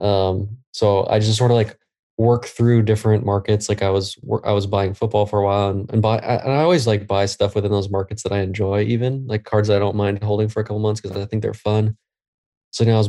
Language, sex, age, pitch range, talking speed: English, male, 20-39, 100-110 Hz, 255 wpm